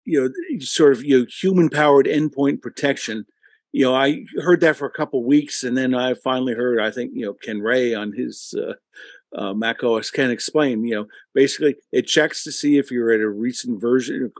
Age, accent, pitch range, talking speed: 50-69, American, 115-150 Hz, 215 wpm